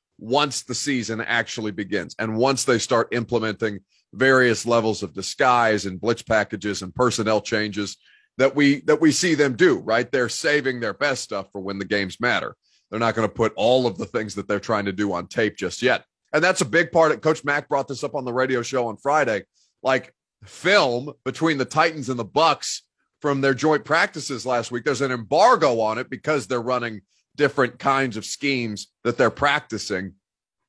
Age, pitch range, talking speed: 30-49, 110-145 Hz, 200 wpm